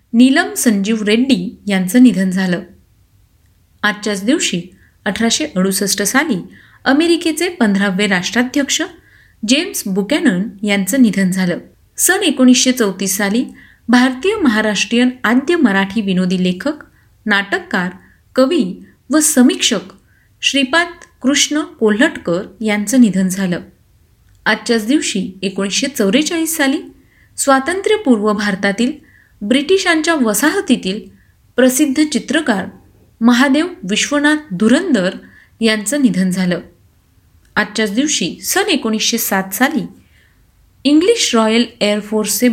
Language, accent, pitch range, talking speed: Marathi, native, 195-275 Hz, 85 wpm